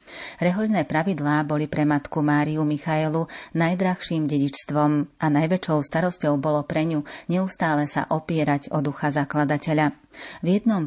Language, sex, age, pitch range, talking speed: Slovak, female, 30-49, 150-170 Hz, 125 wpm